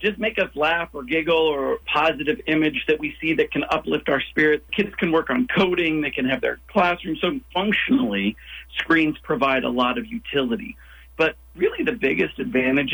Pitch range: 135-175 Hz